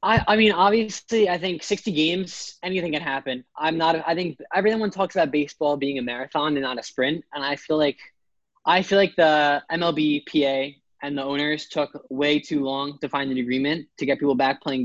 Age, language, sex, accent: 10-29, English, male, American